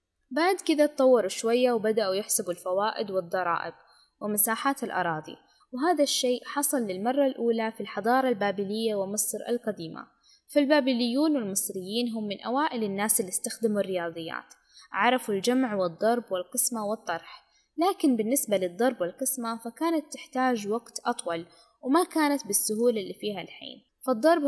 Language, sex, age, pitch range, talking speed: Arabic, female, 10-29, 195-260 Hz, 120 wpm